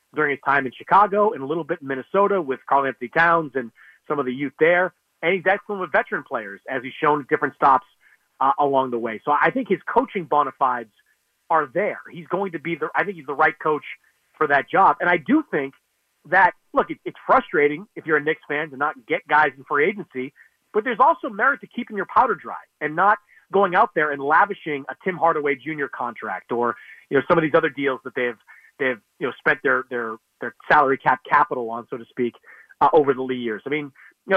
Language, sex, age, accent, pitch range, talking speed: English, male, 30-49, American, 140-190 Hz, 235 wpm